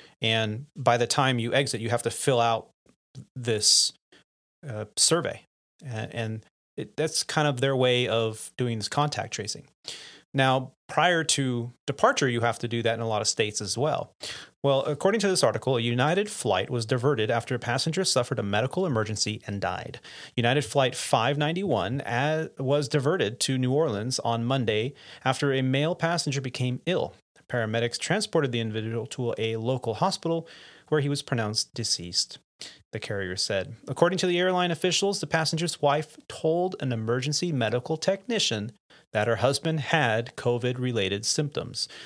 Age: 30-49